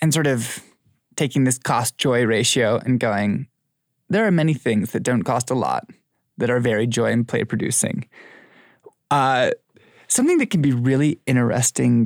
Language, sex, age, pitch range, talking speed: English, male, 20-39, 125-155 Hz, 150 wpm